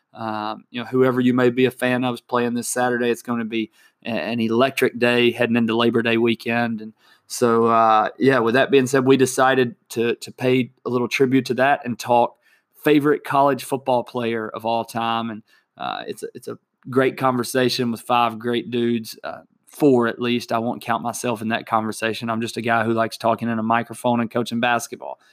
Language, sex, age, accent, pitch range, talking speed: English, male, 20-39, American, 115-125 Hz, 210 wpm